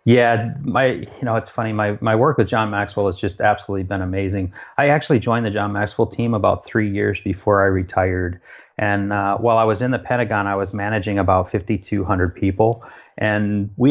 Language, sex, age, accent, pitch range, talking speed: English, male, 30-49, American, 95-115 Hz, 200 wpm